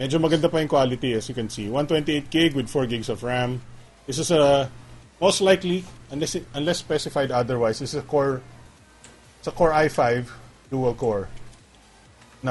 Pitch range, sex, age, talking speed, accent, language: 115-155 Hz, male, 30-49, 165 wpm, Filipino, English